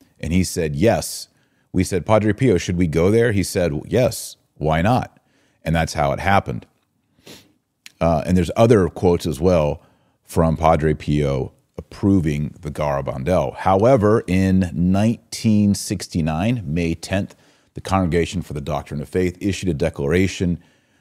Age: 40-59